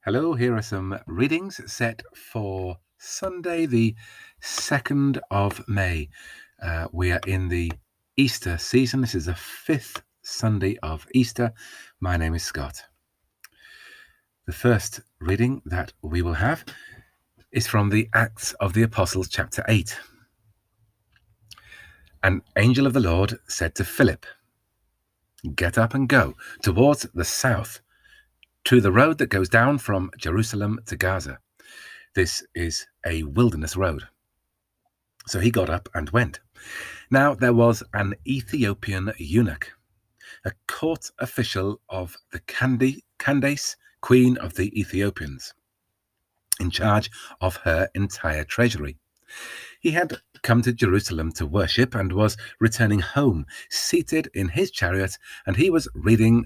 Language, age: English, 40-59